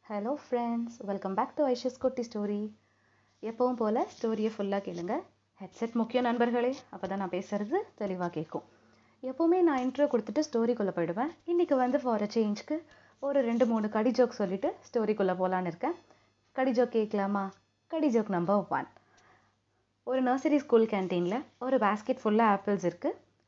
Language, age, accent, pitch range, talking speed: Tamil, 30-49, native, 190-250 Hz, 150 wpm